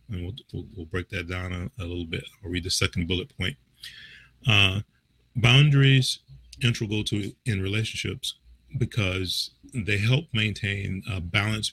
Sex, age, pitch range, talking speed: male, 40-59, 90-115 Hz, 145 wpm